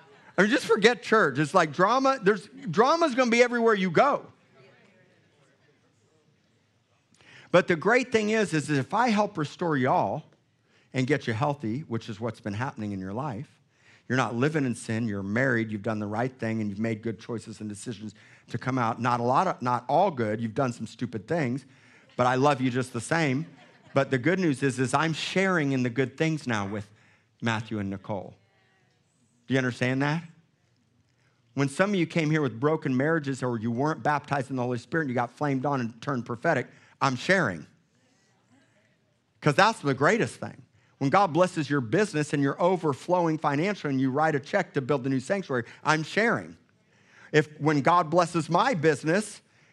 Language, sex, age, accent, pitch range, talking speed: English, male, 50-69, American, 120-165 Hz, 190 wpm